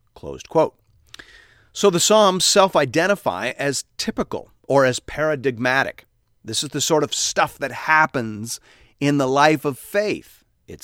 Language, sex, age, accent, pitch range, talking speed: English, male, 40-59, American, 115-150 Hz, 140 wpm